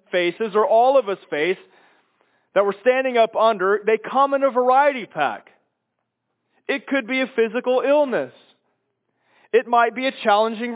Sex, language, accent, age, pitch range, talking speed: male, English, American, 30-49, 210-265 Hz, 155 wpm